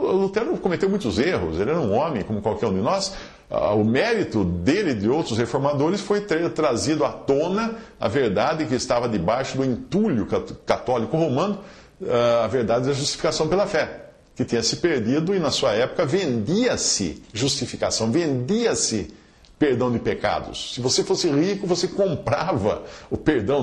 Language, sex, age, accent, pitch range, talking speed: Portuguese, male, 50-69, Brazilian, 115-190 Hz, 160 wpm